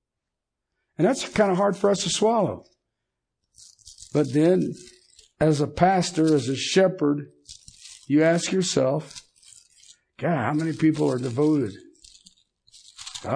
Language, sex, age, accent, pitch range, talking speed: English, male, 60-79, American, 125-160 Hz, 120 wpm